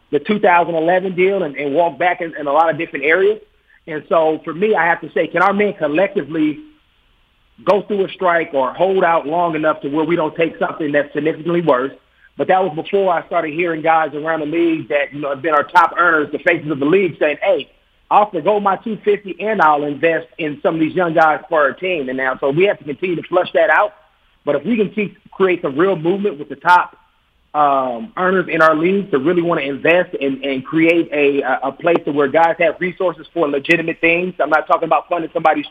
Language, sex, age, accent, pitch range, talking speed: English, male, 30-49, American, 145-180 Hz, 235 wpm